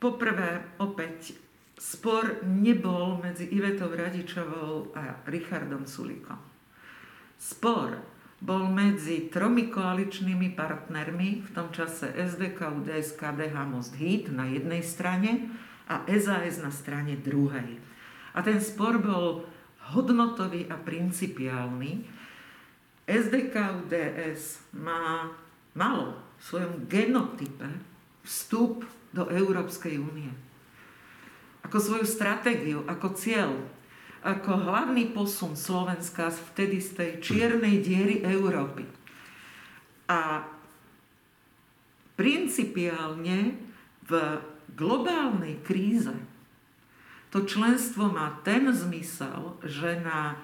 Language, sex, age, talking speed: Slovak, female, 50-69, 95 wpm